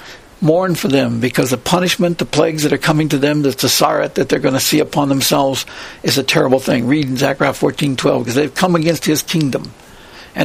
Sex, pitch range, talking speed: male, 140-175 Hz, 220 wpm